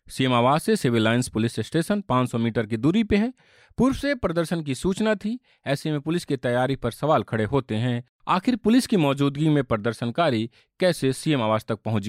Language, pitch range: Hindi, 110-155 Hz